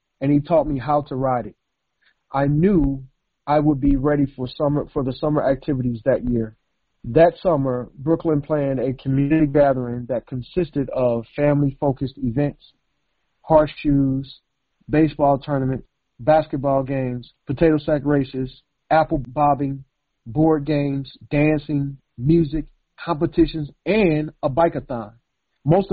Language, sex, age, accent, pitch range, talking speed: English, male, 40-59, American, 130-155 Hz, 125 wpm